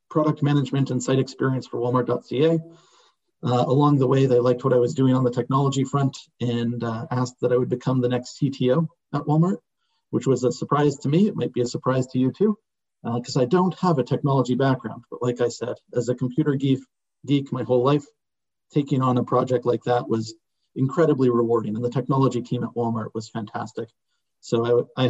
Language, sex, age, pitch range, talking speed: English, male, 40-59, 120-140 Hz, 210 wpm